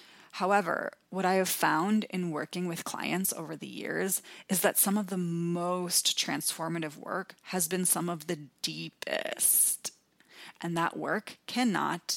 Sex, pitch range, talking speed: female, 170-195 Hz, 150 wpm